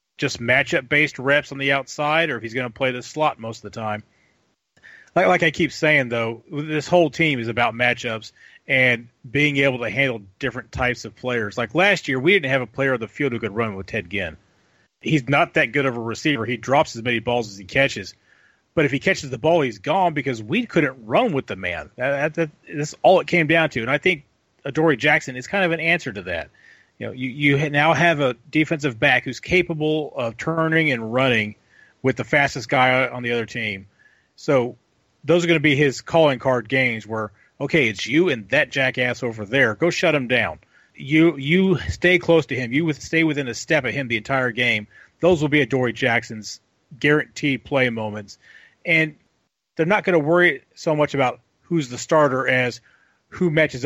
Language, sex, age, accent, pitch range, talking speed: English, male, 30-49, American, 120-155 Hz, 210 wpm